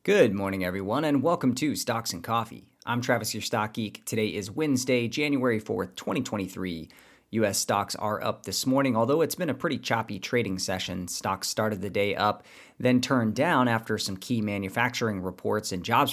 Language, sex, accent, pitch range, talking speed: English, male, American, 100-120 Hz, 180 wpm